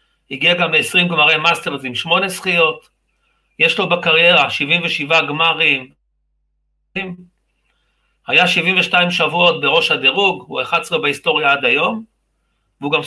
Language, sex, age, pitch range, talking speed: Hebrew, male, 40-59, 150-185 Hz, 115 wpm